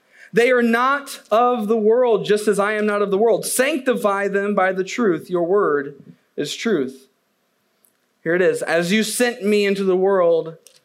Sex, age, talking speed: male, 20-39, 185 wpm